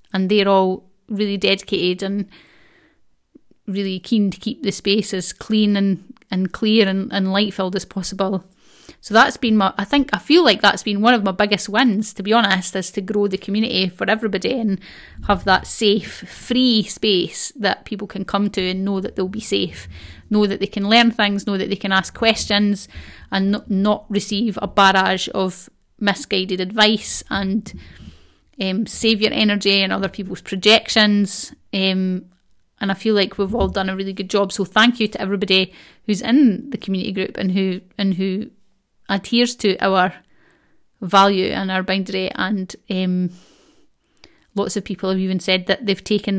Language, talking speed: English, 180 wpm